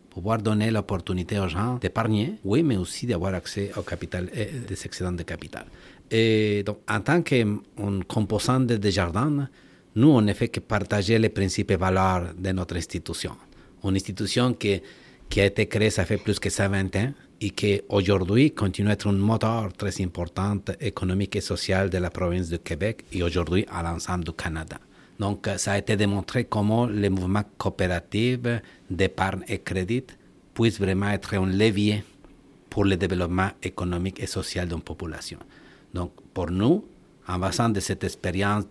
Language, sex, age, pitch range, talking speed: French, male, 60-79, 95-110 Hz, 170 wpm